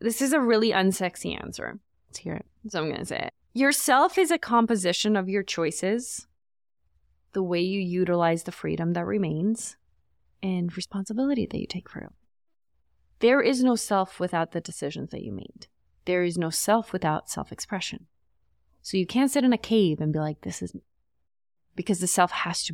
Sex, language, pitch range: female, English, 165-220 Hz